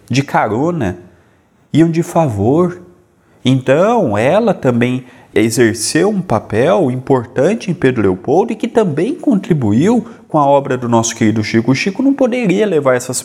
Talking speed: 140 wpm